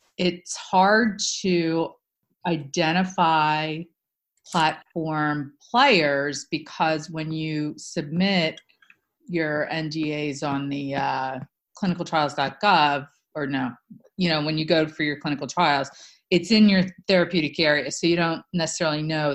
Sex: female